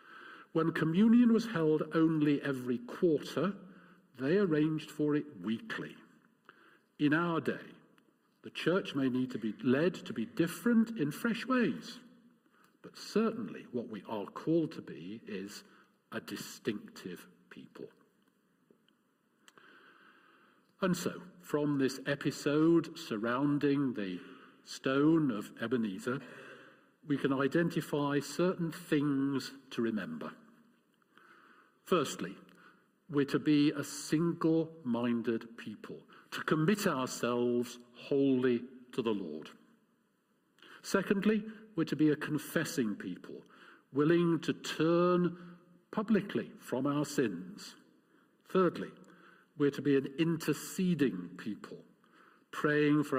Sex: male